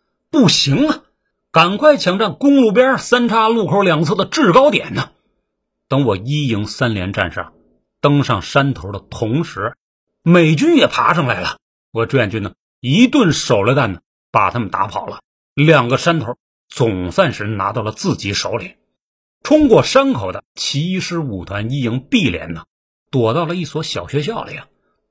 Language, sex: Chinese, male